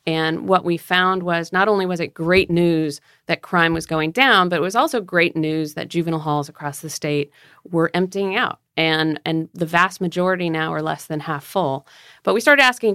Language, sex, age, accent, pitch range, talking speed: English, female, 40-59, American, 165-195 Hz, 215 wpm